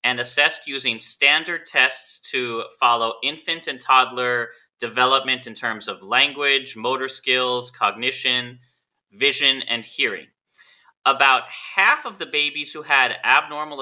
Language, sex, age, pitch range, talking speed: English, male, 30-49, 115-155 Hz, 125 wpm